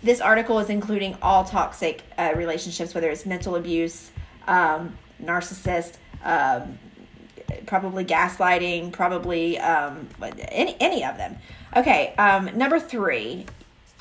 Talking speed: 115 wpm